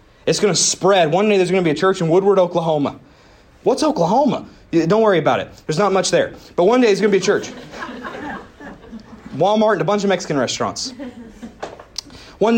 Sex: male